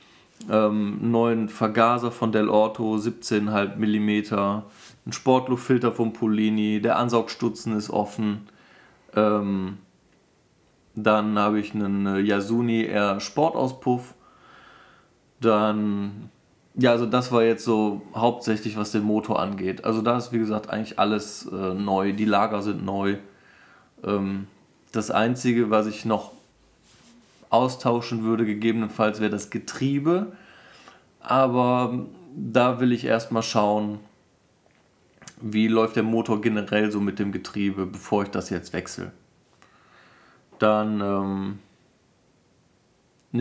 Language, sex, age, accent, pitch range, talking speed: German, male, 20-39, German, 105-120 Hz, 115 wpm